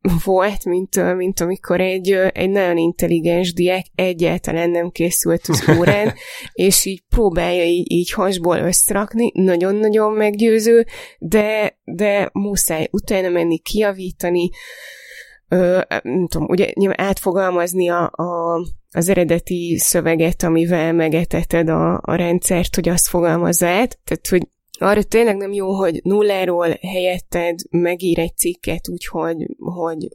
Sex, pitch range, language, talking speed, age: female, 170-195 Hz, Hungarian, 120 wpm, 20-39